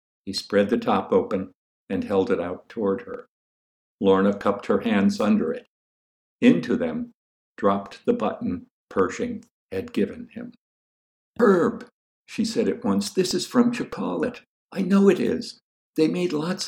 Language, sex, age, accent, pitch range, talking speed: English, male, 60-79, American, 200-240 Hz, 150 wpm